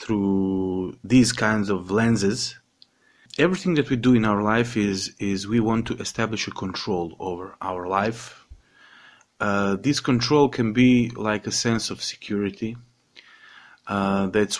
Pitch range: 95-120 Hz